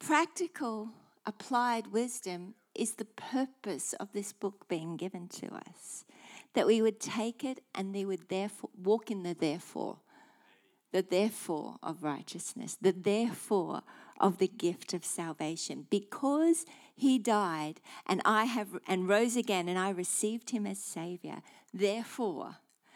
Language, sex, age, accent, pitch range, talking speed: English, female, 50-69, Australian, 190-245 Hz, 140 wpm